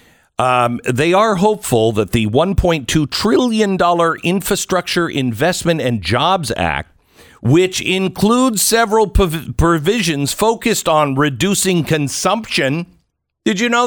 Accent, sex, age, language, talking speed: American, male, 50-69, English, 105 wpm